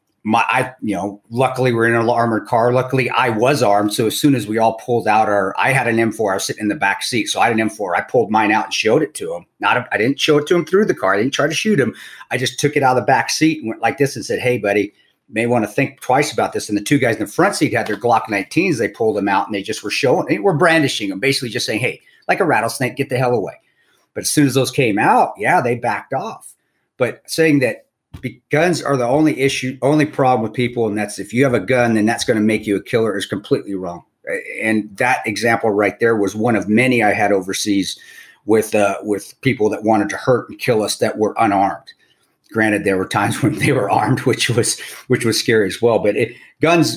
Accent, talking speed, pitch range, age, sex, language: American, 270 wpm, 105-140 Hz, 40-59, male, English